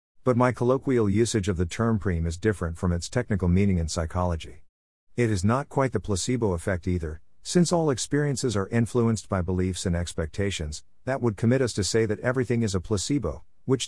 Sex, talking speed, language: male, 195 wpm, English